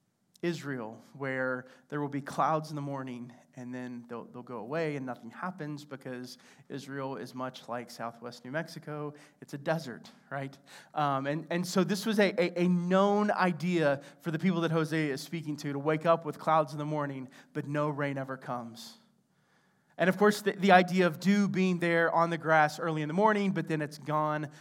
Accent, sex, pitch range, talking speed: American, male, 145-190 Hz, 200 wpm